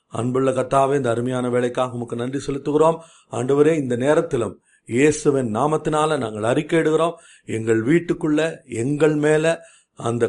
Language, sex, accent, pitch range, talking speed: Tamil, male, native, 120-160 Hz, 115 wpm